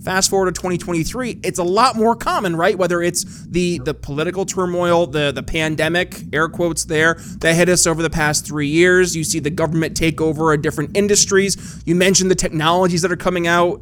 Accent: American